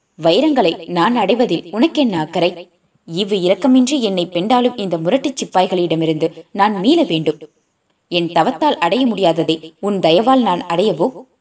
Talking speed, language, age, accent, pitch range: 110 wpm, Tamil, 20-39, native, 175-255 Hz